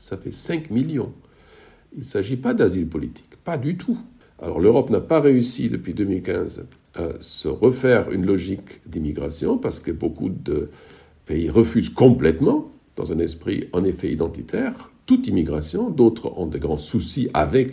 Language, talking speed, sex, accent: French, 160 wpm, male, French